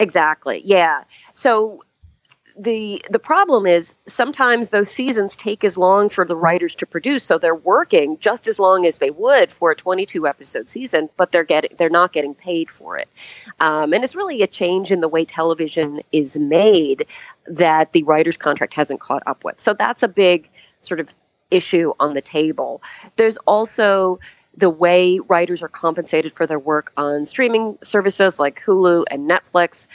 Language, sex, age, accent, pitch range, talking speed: English, female, 40-59, American, 155-210 Hz, 175 wpm